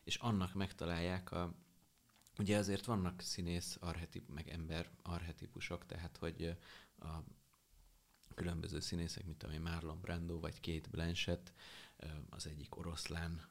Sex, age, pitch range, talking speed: male, 30-49, 80-100 Hz, 120 wpm